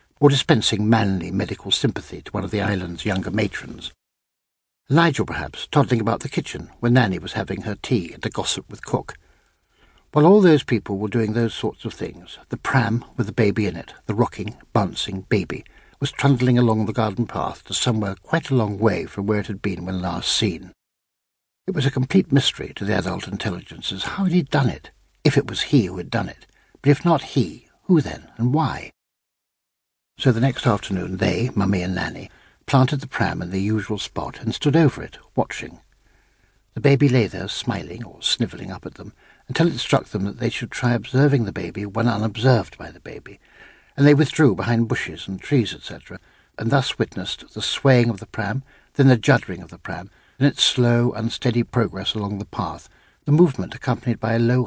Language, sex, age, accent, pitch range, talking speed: English, male, 60-79, British, 100-130 Hz, 200 wpm